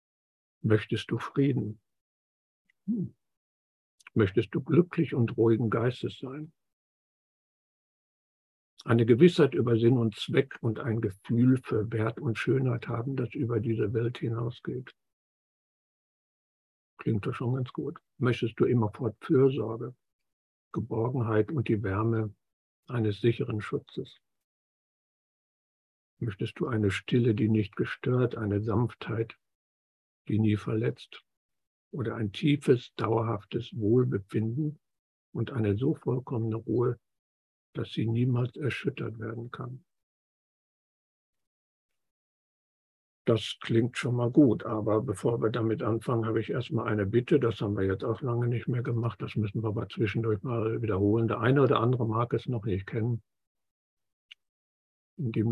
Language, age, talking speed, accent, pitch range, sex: German, 60-79, 125 wpm, German, 105-120 Hz, male